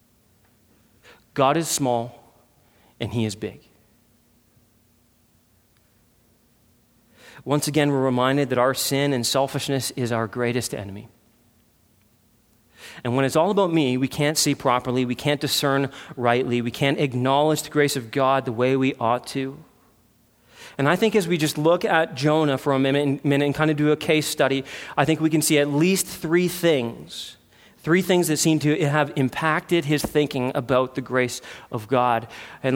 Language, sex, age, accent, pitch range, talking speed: English, male, 40-59, American, 120-170 Hz, 165 wpm